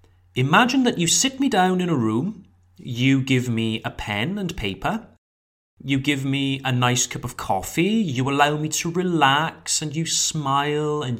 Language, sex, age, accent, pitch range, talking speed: French, male, 30-49, British, 105-160 Hz, 175 wpm